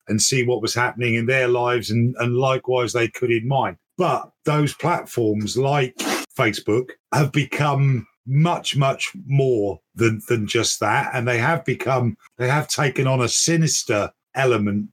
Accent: British